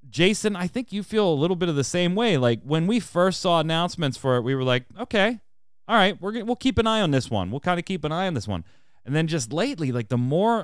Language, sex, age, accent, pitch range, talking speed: English, male, 30-49, American, 105-165 Hz, 290 wpm